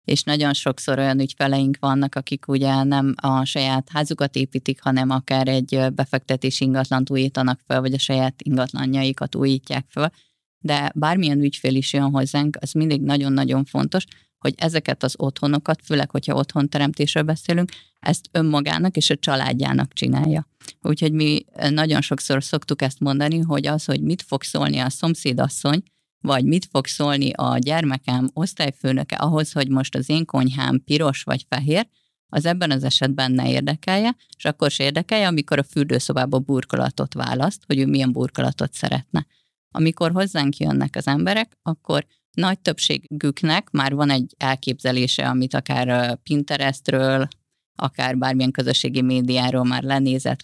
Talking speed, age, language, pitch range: 145 wpm, 30-49, Hungarian, 130-150 Hz